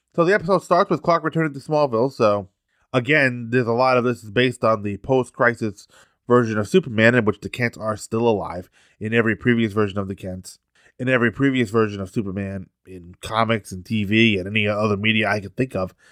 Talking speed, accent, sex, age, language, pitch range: 210 wpm, American, male, 20-39, English, 105-130 Hz